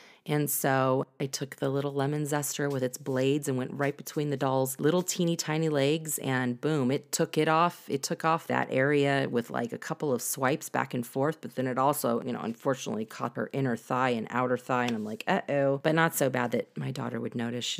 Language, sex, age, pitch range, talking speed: English, female, 30-49, 130-165 Hz, 235 wpm